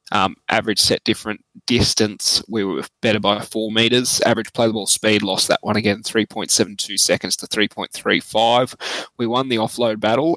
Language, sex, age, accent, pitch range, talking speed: English, male, 20-39, Australian, 105-125 Hz, 155 wpm